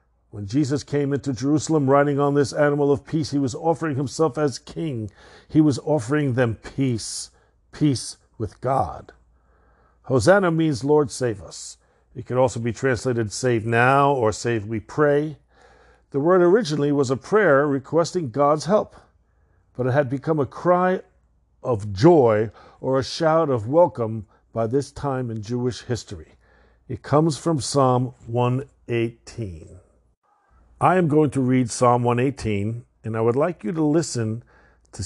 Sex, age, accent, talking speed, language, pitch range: male, 50-69, American, 150 wpm, English, 115-155 Hz